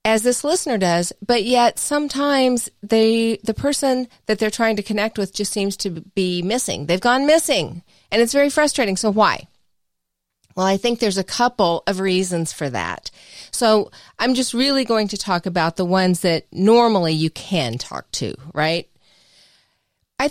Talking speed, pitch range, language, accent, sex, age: 170 wpm, 185-250 Hz, English, American, female, 40-59